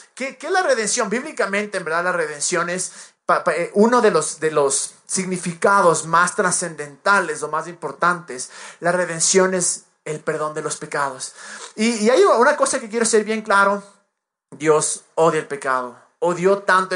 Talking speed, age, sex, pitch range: 175 wpm, 30-49, male, 170-215 Hz